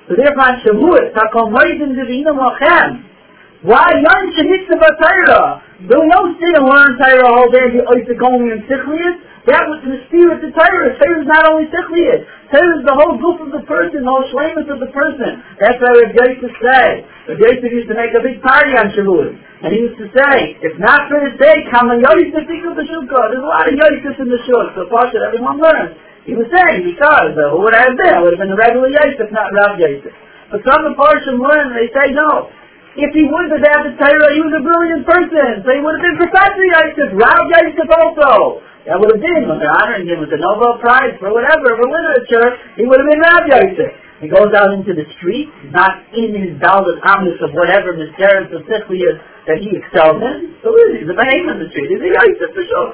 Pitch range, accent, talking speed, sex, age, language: 240-320 Hz, American, 210 wpm, male, 50-69, English